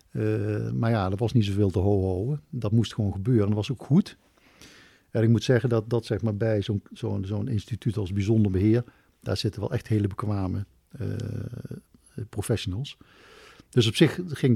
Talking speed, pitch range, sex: 185 wpm, 100-120 Hz, male